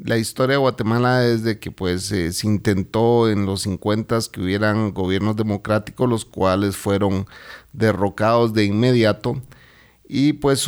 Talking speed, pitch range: 145 wpm, 100-125 Hz